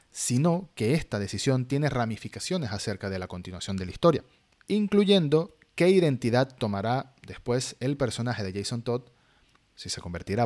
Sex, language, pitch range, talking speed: male, Spanish, 105-140 Hz, 150 wpm